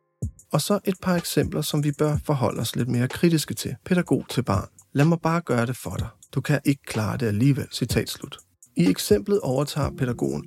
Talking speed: 200 wpm